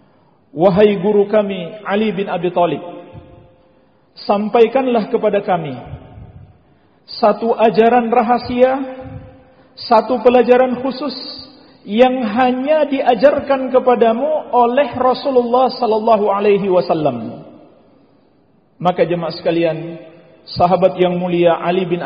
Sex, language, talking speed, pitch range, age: male, Indonesian, 90 wpm, 200-270 Hz, 50-69